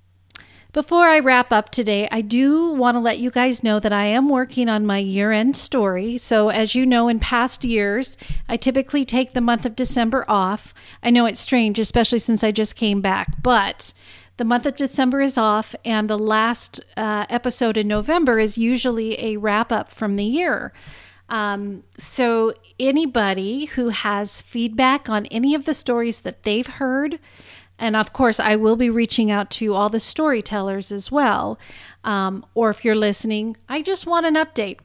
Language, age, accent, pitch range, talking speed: English, 40-59, American, 215-255 Hz, 180 wpm